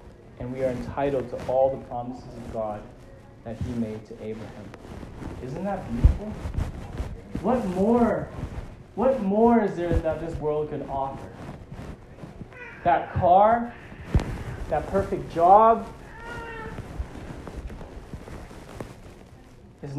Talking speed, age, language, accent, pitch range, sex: 105 wpm, 20-39, English, American, 120-180 Hz, male